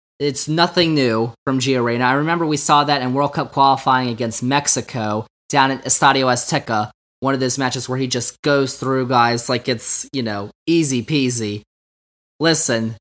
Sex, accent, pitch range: male, American, 130-175 Hz